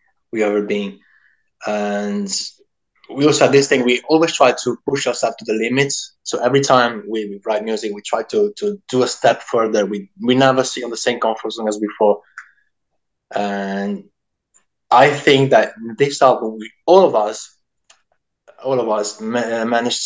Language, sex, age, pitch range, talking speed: English, male, 20-39, 110-135 Hz, 175 wpm